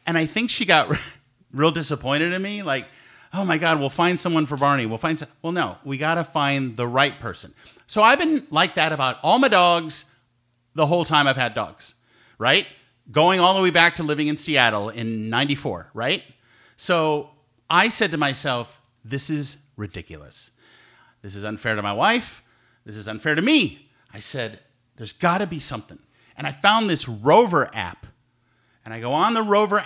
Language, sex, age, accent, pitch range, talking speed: English, male, 30-49, American, 130-180 Hz, 190 wpm